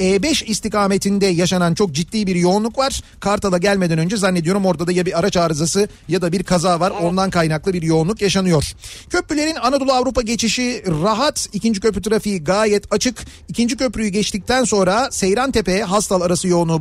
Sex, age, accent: male, 40-59, native